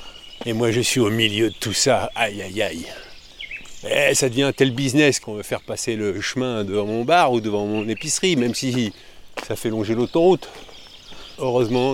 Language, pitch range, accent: French, 110-130 Hz, French